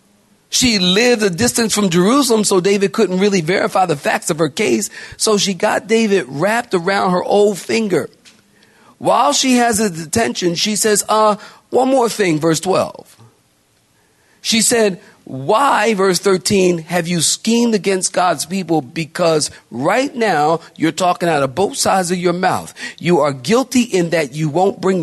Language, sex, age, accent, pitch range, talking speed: English, male, 40-59, American, 175-215 Hz, 165 wpm